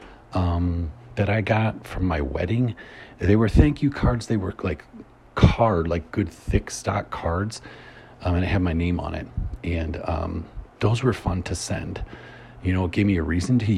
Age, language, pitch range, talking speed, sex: 40-59, English, 85-110 Hz, 190 wpm, male